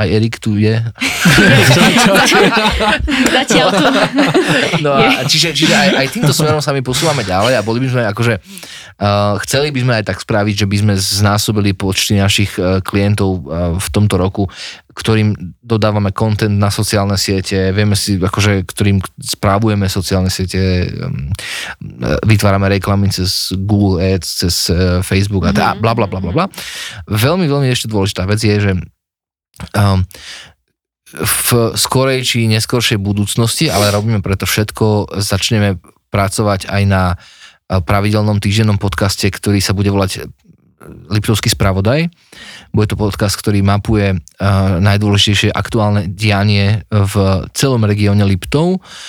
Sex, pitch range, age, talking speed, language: male, 95-110 Hz, 20-39, 135 wpm, Slovak